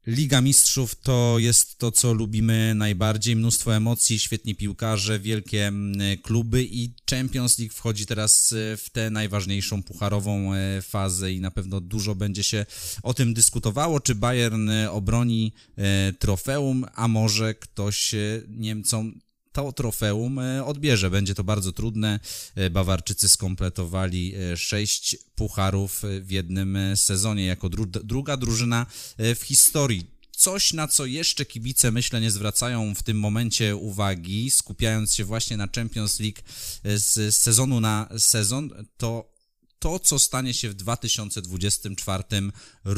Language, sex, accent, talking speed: Polish, male, native, 125 wpm